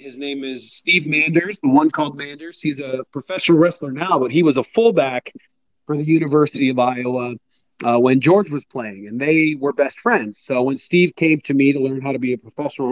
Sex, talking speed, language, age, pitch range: male, 220 wpm, English, 40-59, 130-160 Hz